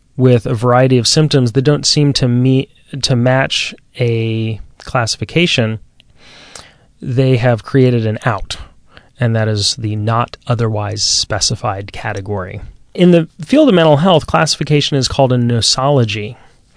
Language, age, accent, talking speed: English, 30-49, American, 135 wpm